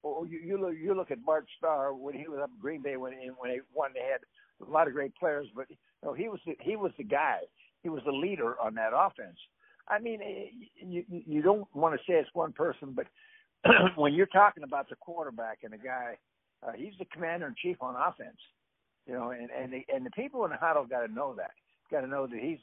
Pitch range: 125-185 Hz